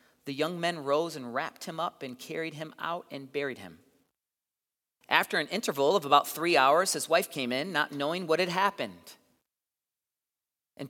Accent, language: American, English